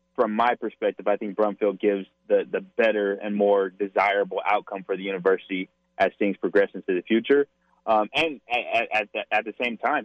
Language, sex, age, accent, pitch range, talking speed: English, male, 20-39, American, 100-110 Hz, 190 wpm